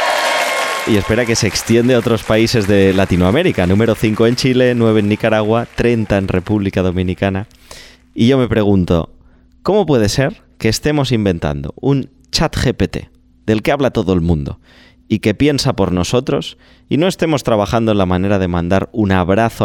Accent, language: Spanish, Spanish